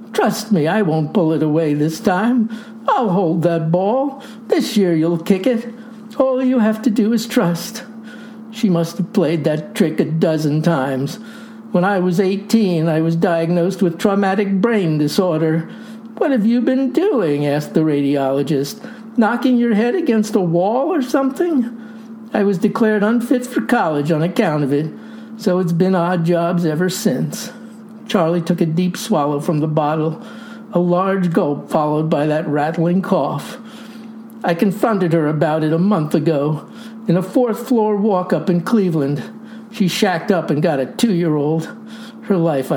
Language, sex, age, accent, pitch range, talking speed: English, male, 60-79, American, 170-225 Hz, 165 wpm